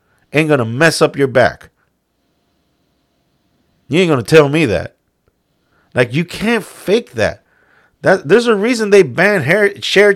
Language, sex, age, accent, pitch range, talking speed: English, male, 50-69, American, 140-190 Hz, 150 wpm